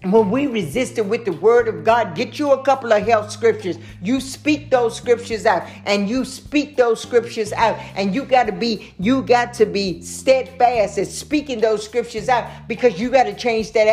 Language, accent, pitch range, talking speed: English, American, 195-240 Hz, 200 wpm